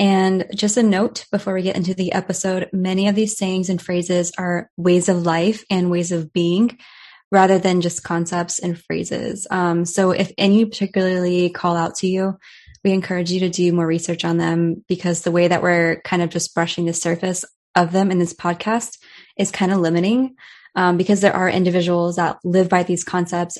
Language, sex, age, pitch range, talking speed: English, female, 20-39, 175-195 Hz, 200 wpm